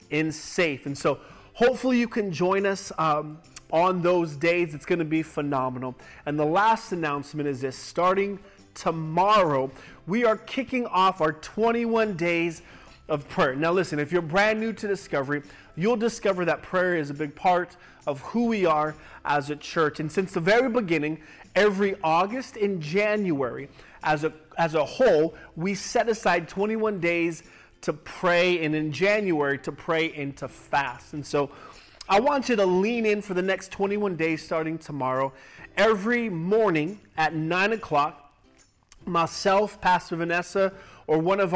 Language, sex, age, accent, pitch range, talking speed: English, male, 30-49, American, 155-195 Hz, 160 wpm